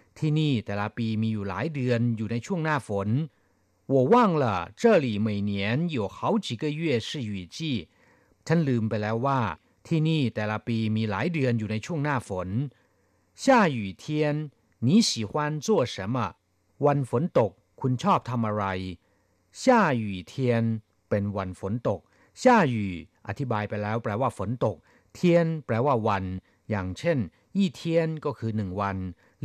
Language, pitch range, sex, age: Thai, 100-140 Hz, male, 60-79